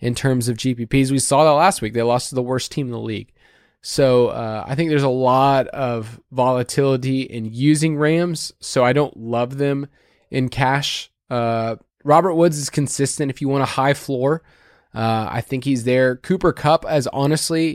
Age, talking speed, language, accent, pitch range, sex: 20-39, 195 wpm, English, American, 125-160 Hz, male